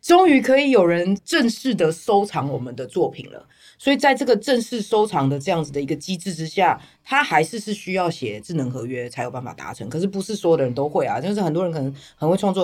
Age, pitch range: 20-39, 145-195 Hz